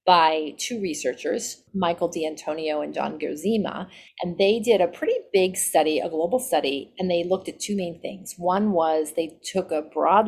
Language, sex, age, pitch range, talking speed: English, female, 30-49, 160-200 Hz, 180 wpm